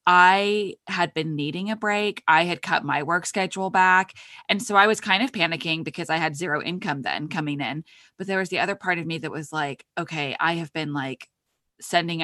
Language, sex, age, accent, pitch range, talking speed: English, female, 20-39, American, 150-190 Hz, 220 wpm